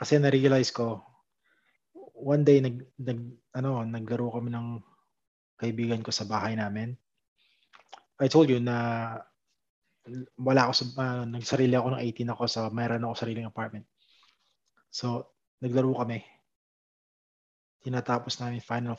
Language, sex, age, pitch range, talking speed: Filipino, male, 20-39, 115-135 Hz, 125 wpm